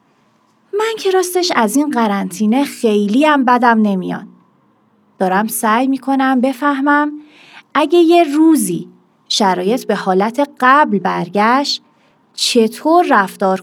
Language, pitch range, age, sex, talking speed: Persian, 195-275 Hz, 30-49, female, 105 wpm